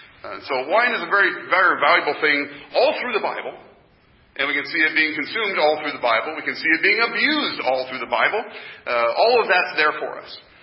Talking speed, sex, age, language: 230 wpm, male, 40-59, English